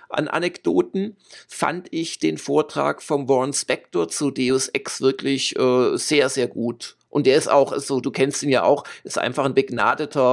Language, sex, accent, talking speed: German, male, German, 185 wpm